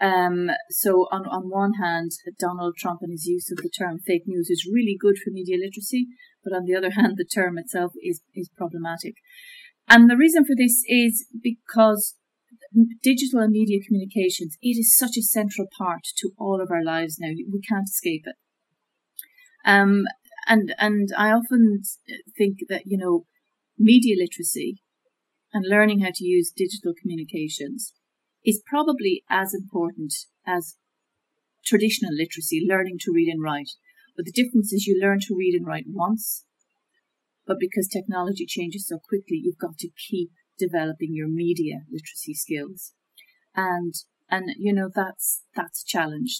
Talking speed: 160 wpm